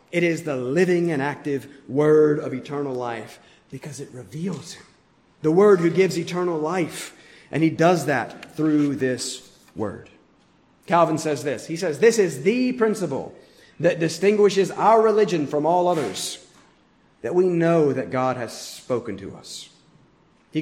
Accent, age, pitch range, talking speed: American, 30-49, 140-190 Hz, 155 wpm